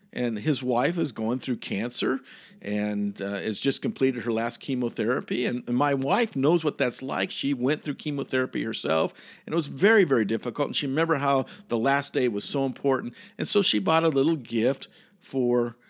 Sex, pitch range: male, 115-185 Hz